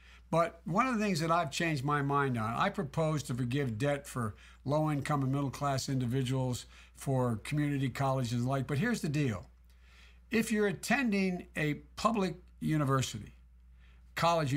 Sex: male